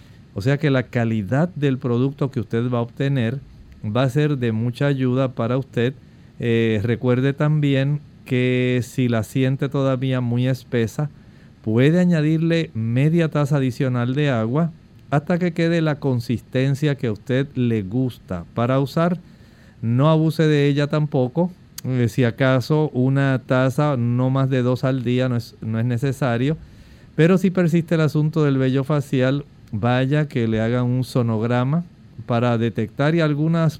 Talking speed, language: 155 wpm, Spanish